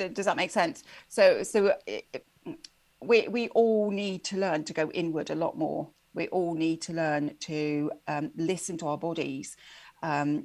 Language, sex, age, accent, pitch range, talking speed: English, female, 40-59, British, 150-175 Hz, 180 wpm